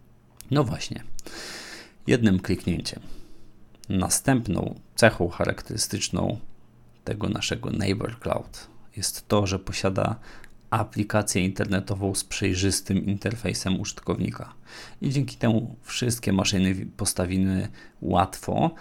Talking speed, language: 90 wpm, Polish